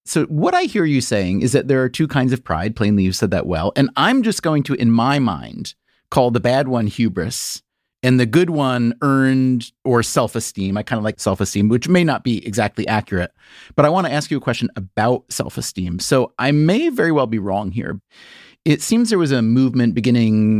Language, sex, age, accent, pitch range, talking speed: English, male, 30-49, American, 105-135 Hz, 220 wpm